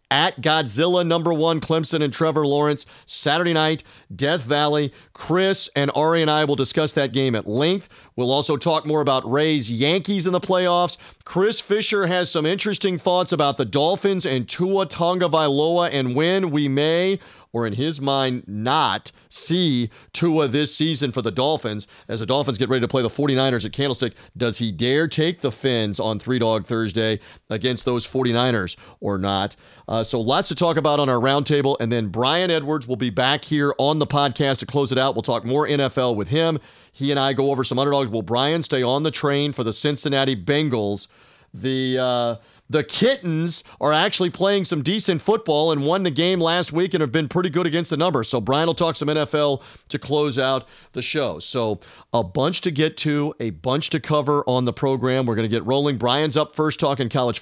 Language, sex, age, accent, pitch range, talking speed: English, male, 40-59, American, 130-170 Hz, 200 wpm